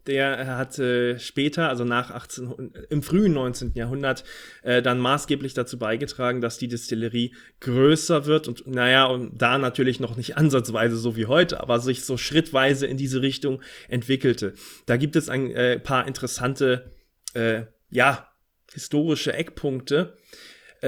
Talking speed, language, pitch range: 150 wpm, German, 120-145 Hz